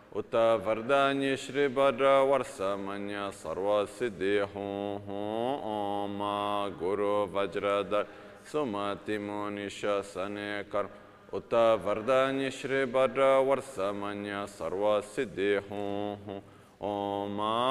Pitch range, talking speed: 100-115 Hz, 70 wpm